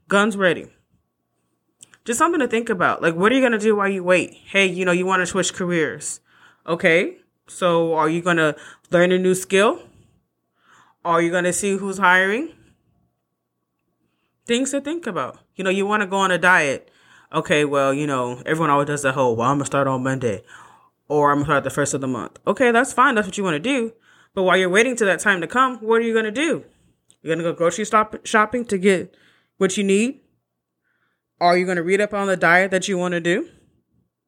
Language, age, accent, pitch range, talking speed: English, 20-39, American, 150-215 Hz, 230 wpm